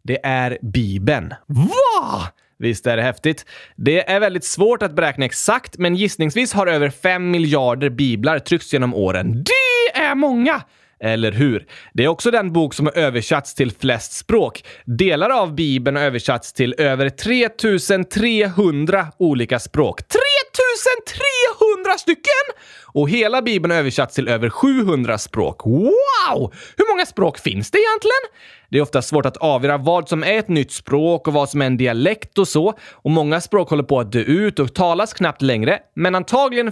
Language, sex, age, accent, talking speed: Swedish, male, 20-39, native, 170 wpm